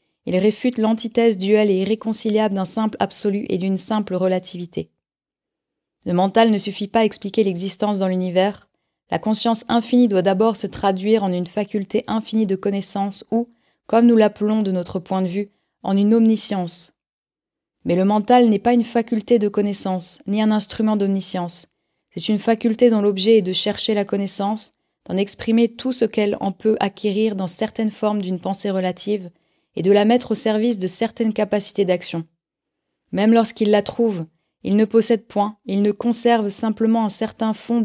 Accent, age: French, 20-39